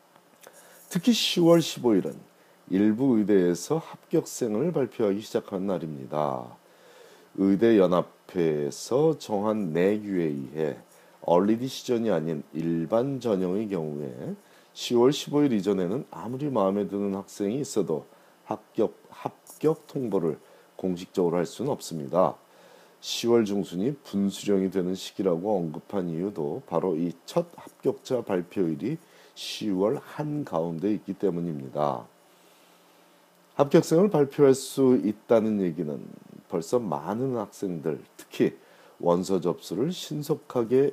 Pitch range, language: 90-135 Hz, Korean